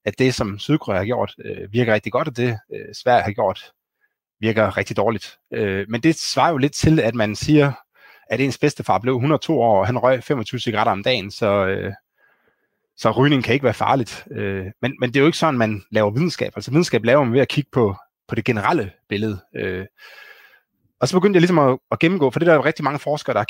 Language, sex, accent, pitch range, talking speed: Danish, male, native, 115-150 Hz, 220 wpm